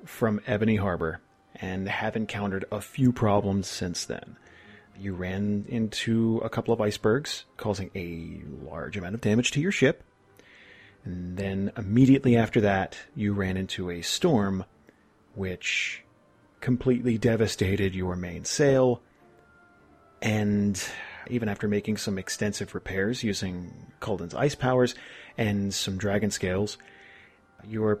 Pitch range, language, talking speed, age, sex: 100-125 Hz, English, 125 wpm, 30-49, male